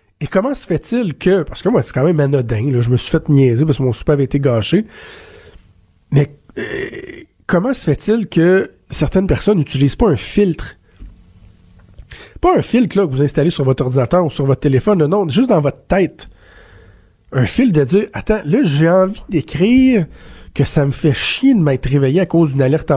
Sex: male